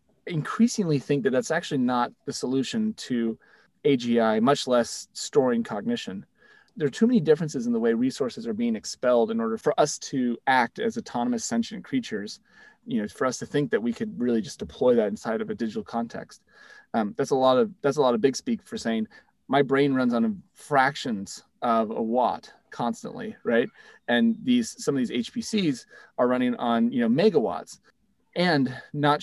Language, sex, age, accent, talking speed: English, male, 30-49, American, 185 wpm